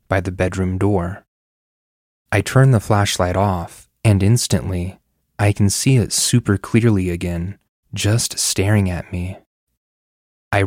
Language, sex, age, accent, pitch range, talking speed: English, male, 20-39, American, 90-105 Hz, 130 wpm